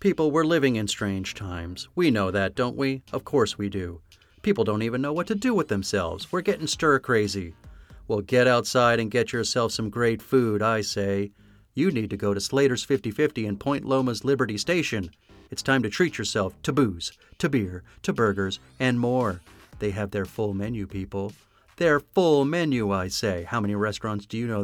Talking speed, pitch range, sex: 195 wpm, 100-125 Hz, male